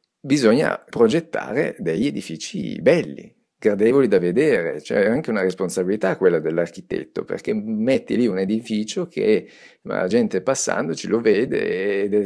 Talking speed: 130 wpm